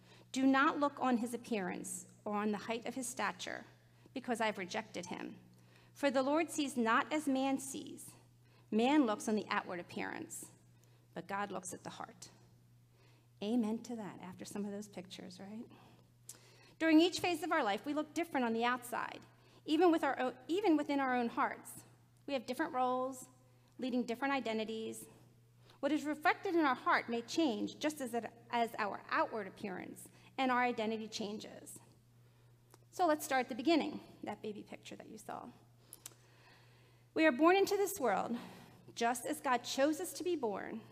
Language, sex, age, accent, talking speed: English, female, 40-59, American, 170 wpm